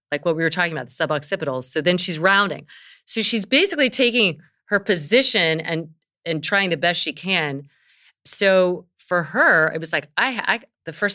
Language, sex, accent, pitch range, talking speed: English, female, American, 150-195 Hz, 190 wpm